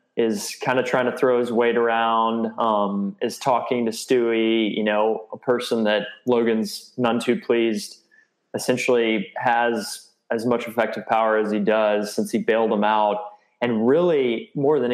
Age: 20-39